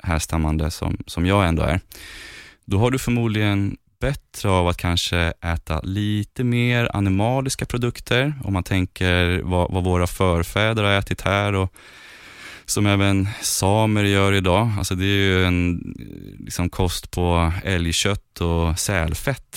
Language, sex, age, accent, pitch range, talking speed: Swedish, male, 20-39, native, 85-100 Hz, 140 wpm